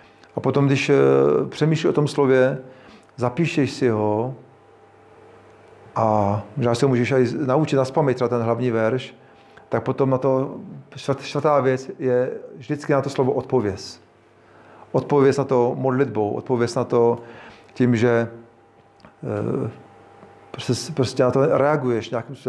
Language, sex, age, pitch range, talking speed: Czech, male, 40-59, 115-135 Hz, 125 wpm